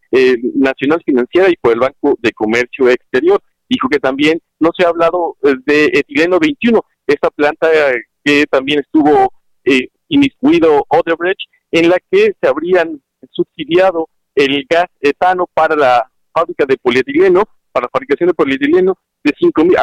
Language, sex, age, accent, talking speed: Spanish, male, 50-69, Mexican, 155 wpm